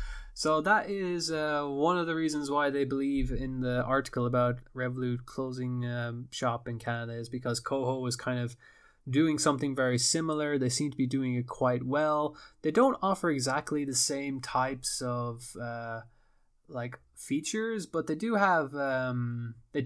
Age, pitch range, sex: 20-39, 125-155 Hz, male